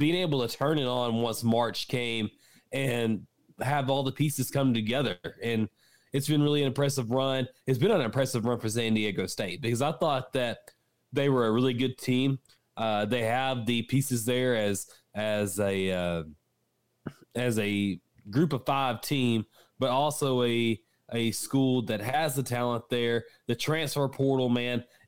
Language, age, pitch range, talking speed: English, 20-39, 115-135 Hz, 170 wpm